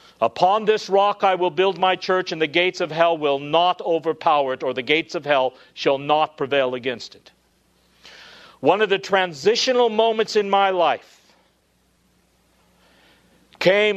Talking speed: 155 wpm